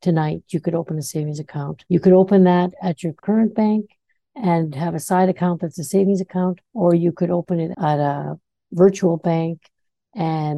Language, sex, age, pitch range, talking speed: English, female, 60-79, 160-190 Hz, 195 wpm